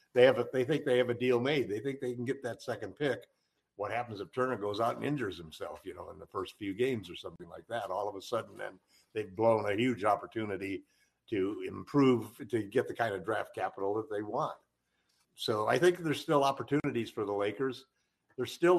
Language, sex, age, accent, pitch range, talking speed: English, male, 60-79, American, 110-140 Hz, 225 wpm